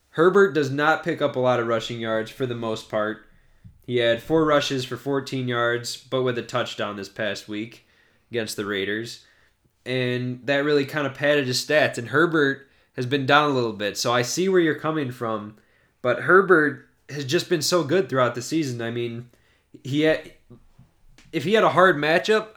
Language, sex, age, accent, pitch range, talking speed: English, male, 20-39, American, 115-145 Hz, 195 wpm